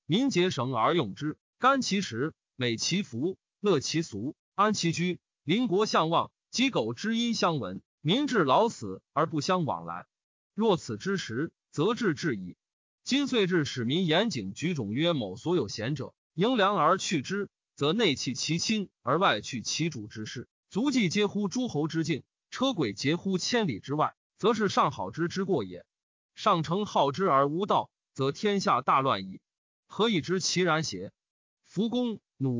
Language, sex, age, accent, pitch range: Chinese, male, 30-49, native, 135-205 Hz